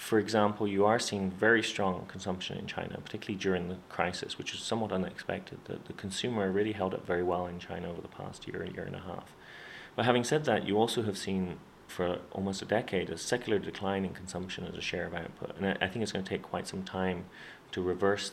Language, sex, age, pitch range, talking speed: English, male, 30-49, 90-105 Hz, 230 wpm